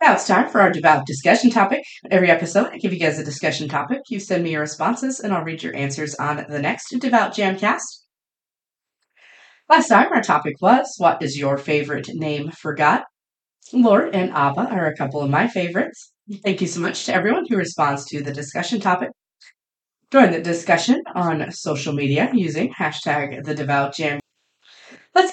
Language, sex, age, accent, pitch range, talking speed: English, female, 30-49, American, 150-210 Hz, 180 wpm